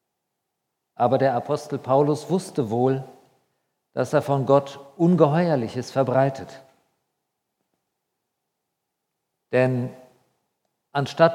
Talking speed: 75 wpm